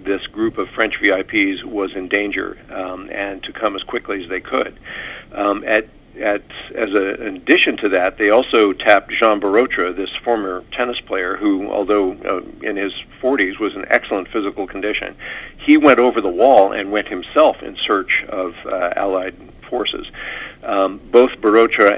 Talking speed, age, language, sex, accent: 170 wpm, 50-69, English, male, American